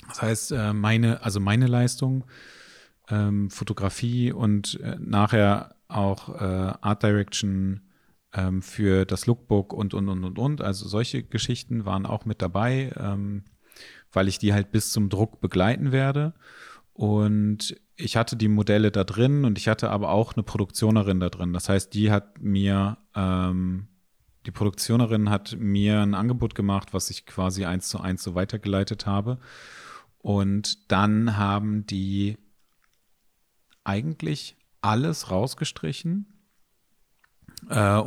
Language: German